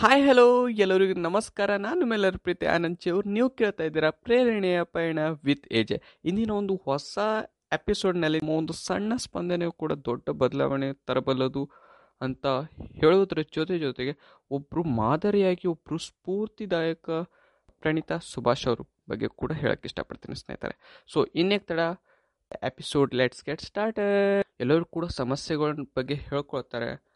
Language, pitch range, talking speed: Kannada, 135-190 Hz, 75 wpm